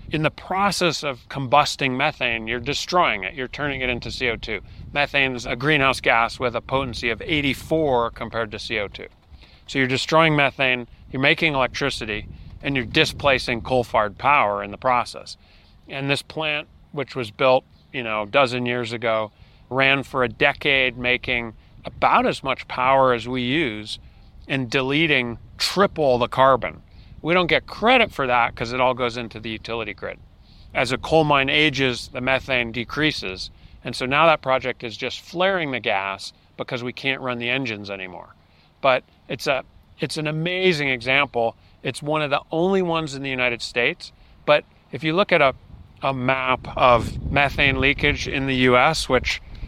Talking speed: 170 wpm